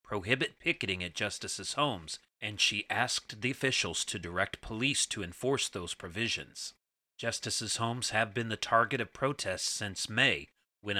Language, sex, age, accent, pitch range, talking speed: English, male, 40-59, American, 95-120 Hz, 155 wpm